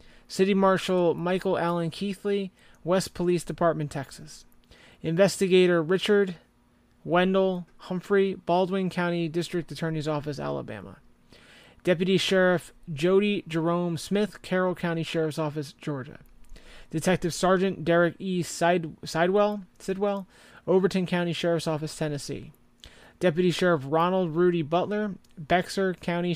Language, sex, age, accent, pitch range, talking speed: English, male, 30-49, American, 165-190 Hz, 110 wpm